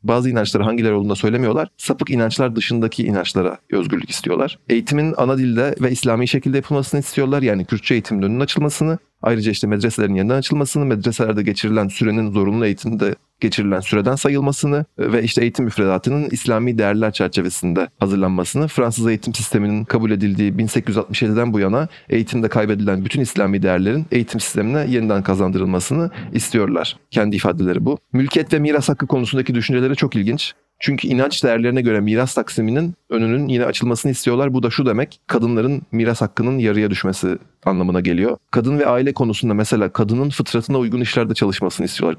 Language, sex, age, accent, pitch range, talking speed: Turkish, male, 40-59, native, 105-130 Hz, 150 wpm